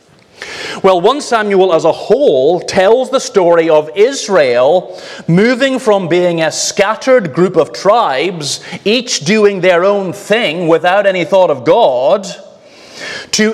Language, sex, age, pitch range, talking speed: English, male, 30-49, 165-215 Hz, 135 wpm